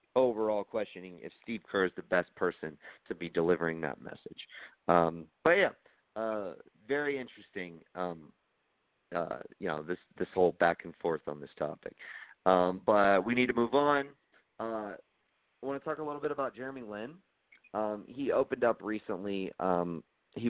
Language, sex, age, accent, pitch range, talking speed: English, male, 40-59, American, 90-120 Hz, 170 wpm